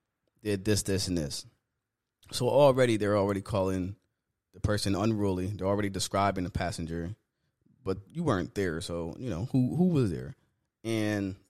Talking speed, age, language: 155 wpm, 20-39, English